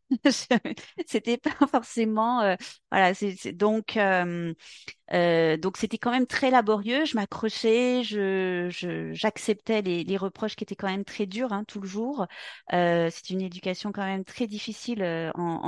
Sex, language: female, French